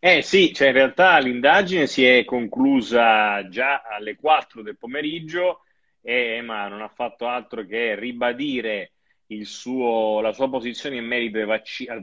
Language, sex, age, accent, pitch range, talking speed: Italian, male, 30-49, native, 105-145 Hz, 150 wpm